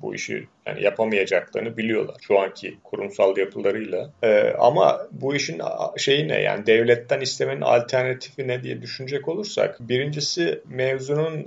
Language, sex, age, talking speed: Turkish, male, 40-59, 130 wpm